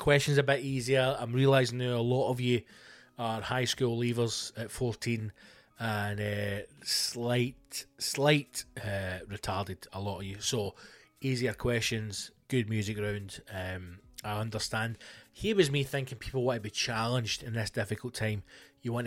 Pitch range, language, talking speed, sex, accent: 110-140 Hz, English, 165 wpm, male, British